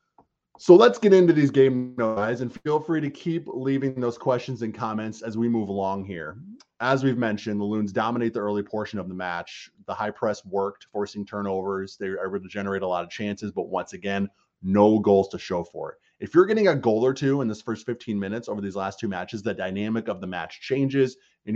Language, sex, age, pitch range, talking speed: English, male, 20-39, 95-130 Hz, 230 wpm